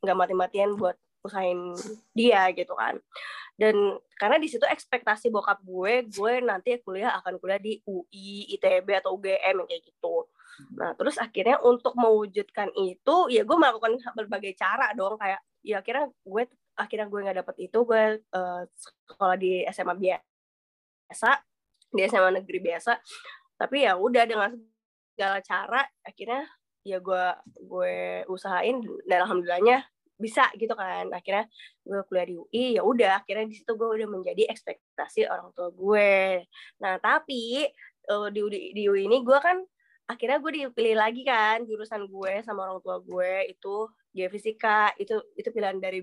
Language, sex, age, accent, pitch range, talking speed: Indonesian, female, 20-39, native, 185-235 Hz, 155 wpm